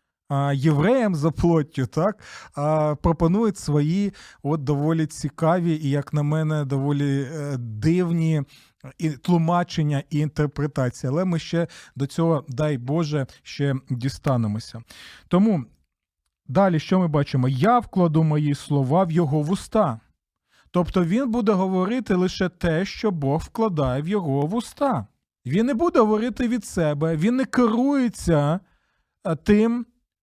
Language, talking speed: Ukrainian, 125 wpm